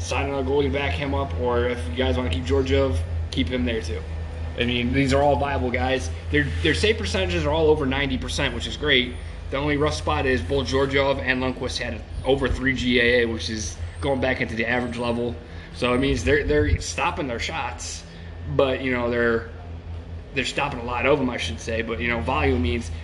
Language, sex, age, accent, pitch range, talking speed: English, male, 20-39, American, 80-120 Hz, 220 wpm